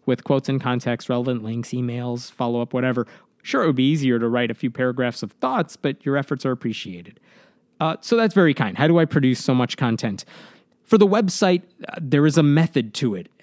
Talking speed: 215 wpm